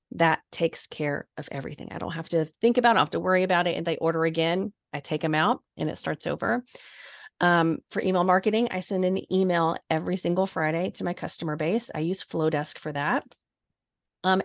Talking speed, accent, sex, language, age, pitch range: 215 wpm, American, female, English, 30-49, 155-195 Hz